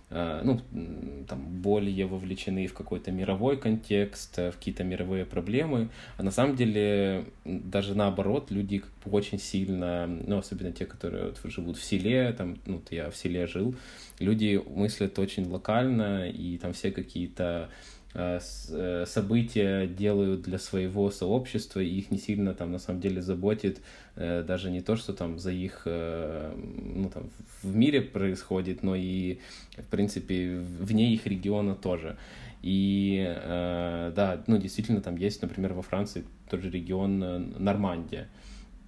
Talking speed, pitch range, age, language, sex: 140 wpm, 90-100 Hz, 20-39, Ukrainian, male